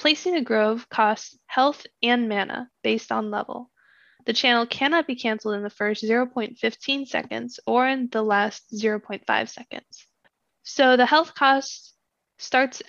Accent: American